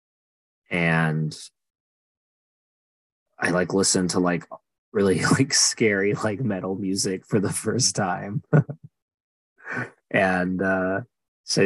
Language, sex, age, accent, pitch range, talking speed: English, male, 20-39, American, 80-105 Hz, 100 wpm